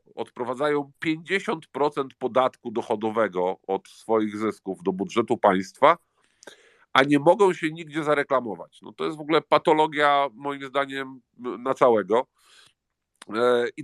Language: Polish